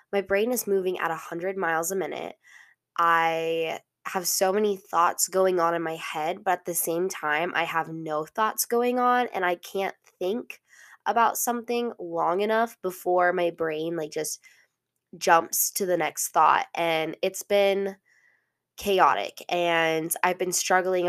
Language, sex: English, female